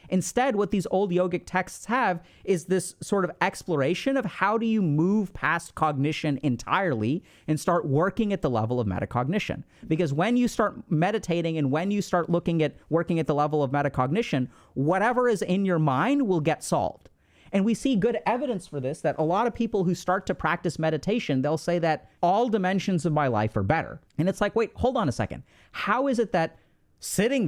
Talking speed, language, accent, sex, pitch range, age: 205 wpm, English, American, male, 155-210 Hz, 30-49